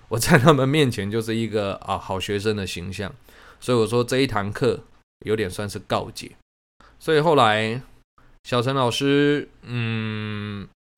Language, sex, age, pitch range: Chinese, male, 20-39, 100-125 Hz